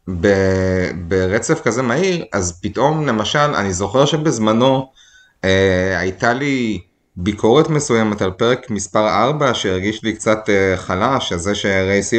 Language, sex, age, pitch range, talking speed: Hebrew, male, 30-49, 95-135 Hz, 130 wpm